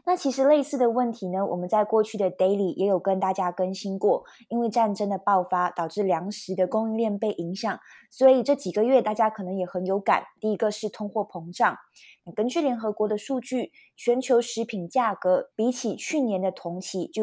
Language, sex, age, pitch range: Chinese, female, 20-39, 185-240 Hz